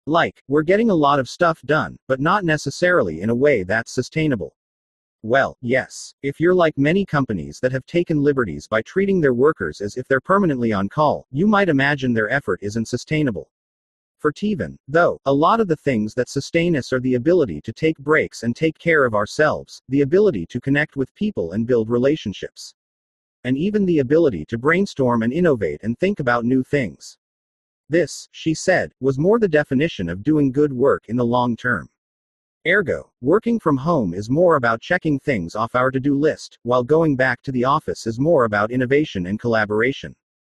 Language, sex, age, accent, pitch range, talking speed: English, male, 40-59, American, 115-155 Hz, 190 wpm